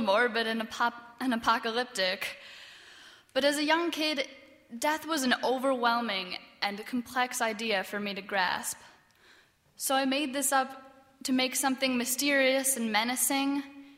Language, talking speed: English, 140 wpm